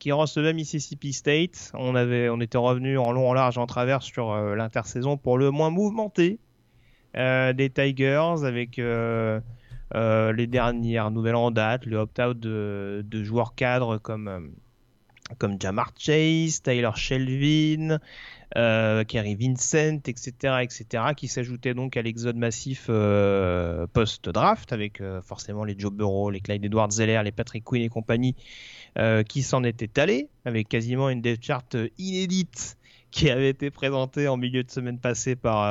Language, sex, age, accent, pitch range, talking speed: French, male, 30-49, French, 115-145 Hz, 155 wpm